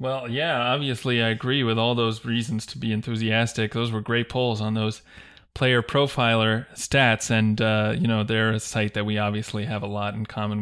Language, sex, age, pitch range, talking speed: English, male, 20-39, 110-120 Hz, 205 wpm